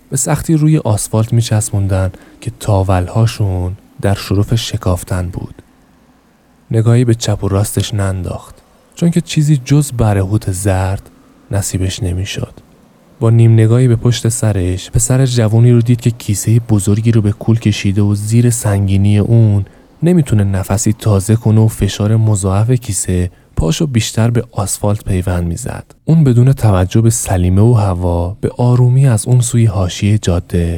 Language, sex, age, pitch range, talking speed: Persian, male, 20-39, 95-120 Hz, 150 wpm